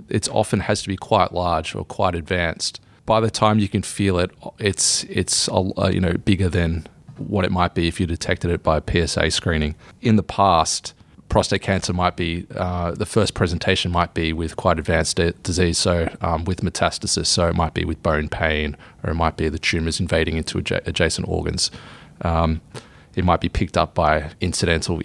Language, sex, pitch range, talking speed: English, male, 85-100 Hz, 200 wpm